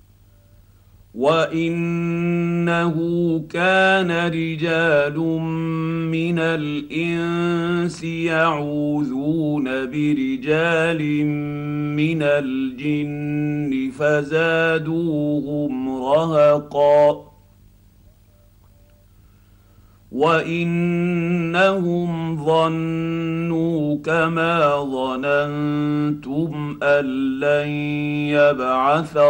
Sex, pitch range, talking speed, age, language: male, 130-165 Hz, 35 wpm, 50-69, Arabic